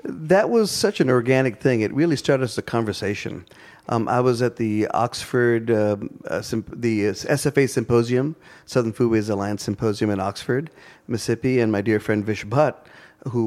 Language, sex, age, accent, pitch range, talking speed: English, male, 40-59, American, 105-140 Hz, 175 wpm